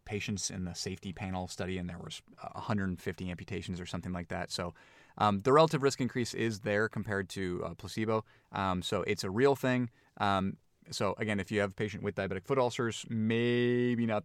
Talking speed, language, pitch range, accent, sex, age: 200 wpm, English, 100-135 Hz, American, male, 30-49